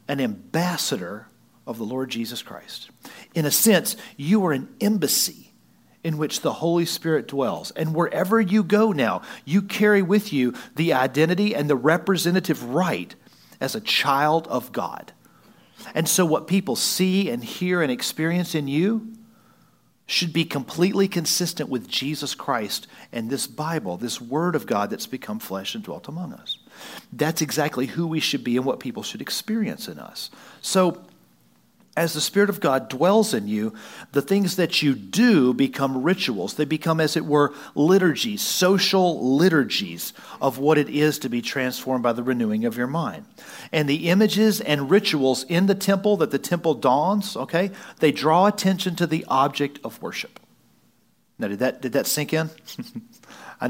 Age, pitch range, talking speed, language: 40-59, 135-195 Hz, 170 wpm, English